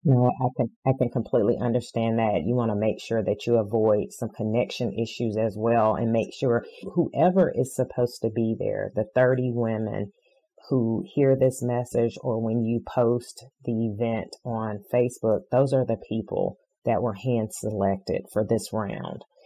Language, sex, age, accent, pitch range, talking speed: English, female, 30-49, American, 115-130 Hz, 175 wpm